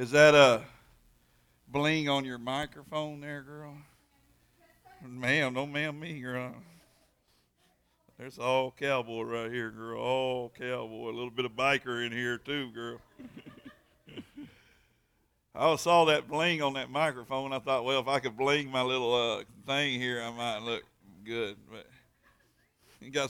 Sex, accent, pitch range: male, American, 115-135 Hz